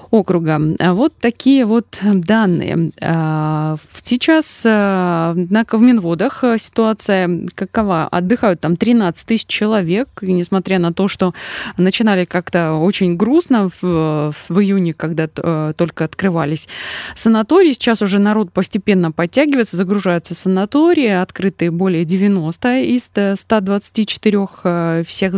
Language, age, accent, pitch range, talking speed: Russian, 20-39, native, 180-225 Hz, 105 wpm